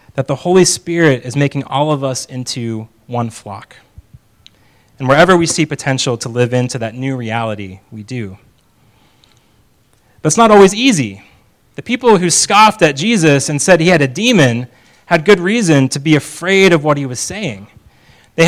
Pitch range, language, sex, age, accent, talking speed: 115-165 Hz, English, male, 30-49, American, 170 wpm